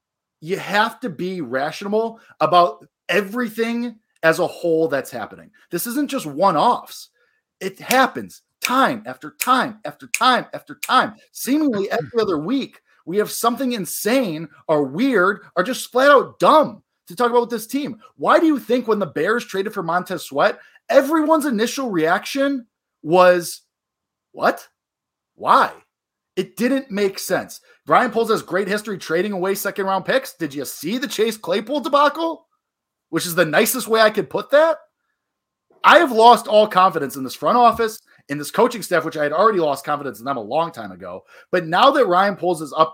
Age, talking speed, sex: 30-49, 170 wpm, male